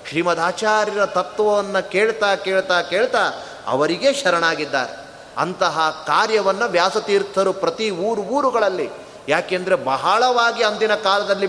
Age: 30-49